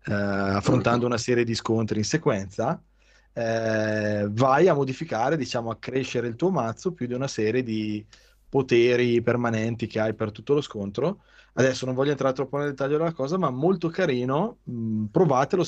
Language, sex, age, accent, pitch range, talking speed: Italian, male, 20-39, native, 105-135 Hz, 170 wpm